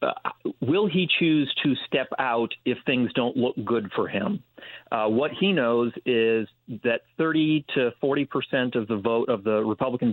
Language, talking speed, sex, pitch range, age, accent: English, 180 wpm, male, 110-135 Hz, 50-69, American